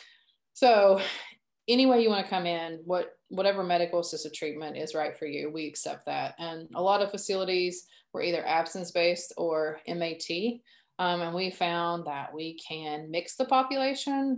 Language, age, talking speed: English, 20-39, 165 wpm